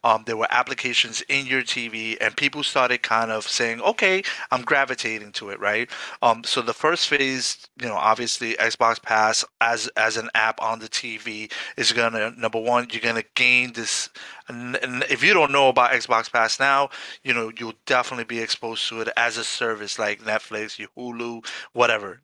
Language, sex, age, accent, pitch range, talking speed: English, male, 30-49, American, 110-135 Hz, 190 wpm